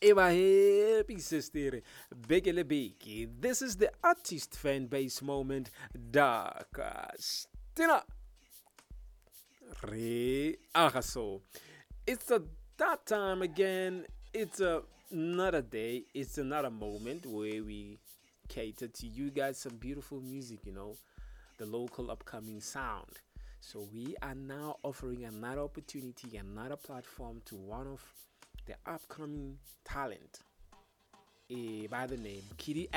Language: English